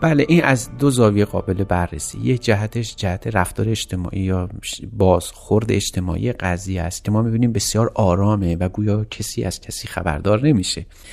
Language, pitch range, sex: Persian, 100-125 Hz, male